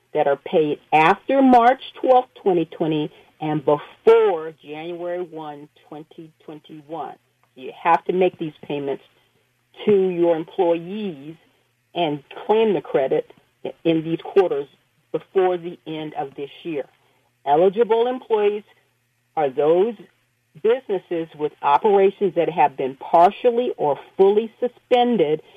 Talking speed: 115 wpm